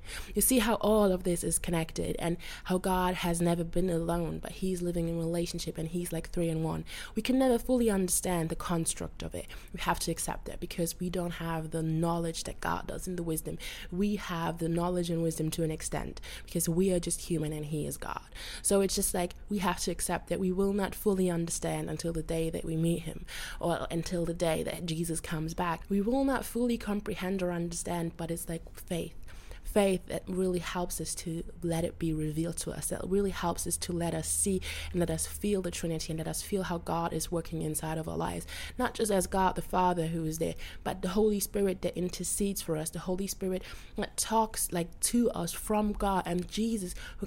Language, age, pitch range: English, 20-39, 165-195 Hz